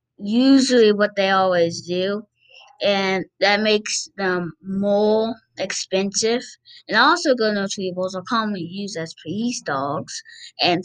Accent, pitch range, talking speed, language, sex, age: American, 175-215 Hz, 115 wpm, English, female, 20-39